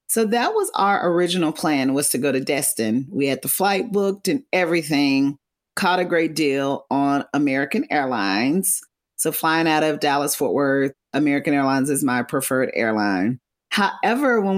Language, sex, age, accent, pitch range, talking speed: English, female, 40-59, American, 140-195 Hz, 165 wpm